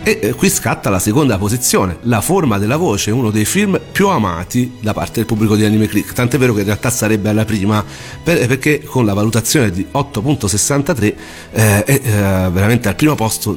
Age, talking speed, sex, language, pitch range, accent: 40-59, 195 wpm, male, Italian, 100-120 Hz, native